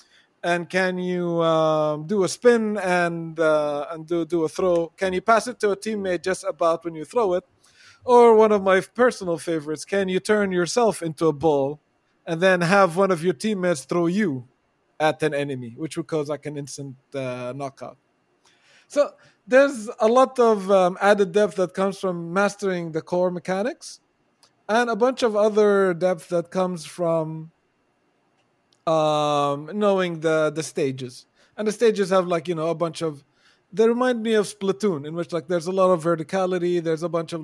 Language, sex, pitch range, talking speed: English, male, 160-200 Hz, 185 wpm